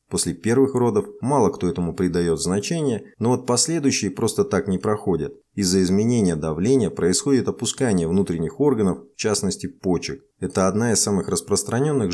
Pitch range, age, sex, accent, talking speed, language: 90-125 Hz, 20-39, male, native, 150 wpm, Russian